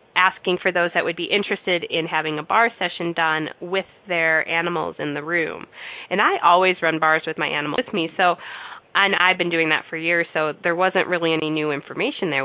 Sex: female